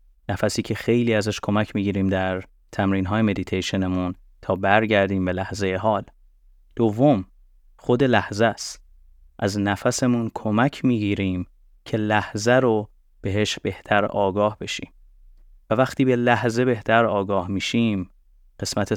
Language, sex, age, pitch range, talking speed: Persian, male, 30-49, 95-110 Hz, 125 wpm